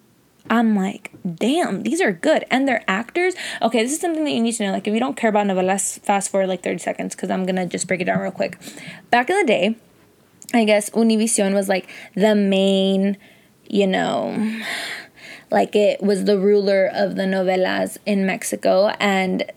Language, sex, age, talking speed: English, female, 20-39, 195 wpm